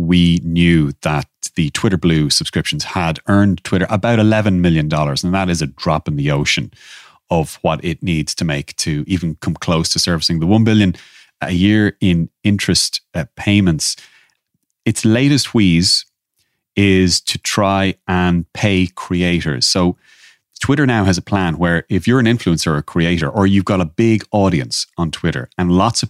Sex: male